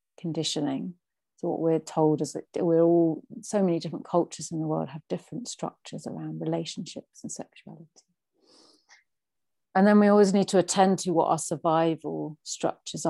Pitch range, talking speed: 160-190 Hz, 160 wpm